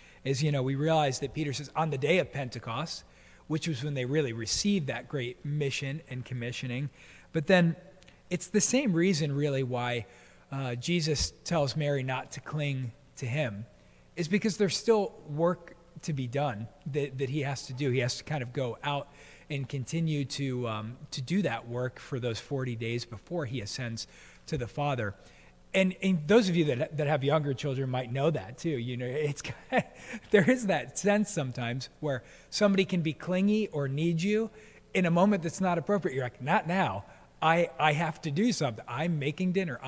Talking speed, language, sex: 195 wpm, English, male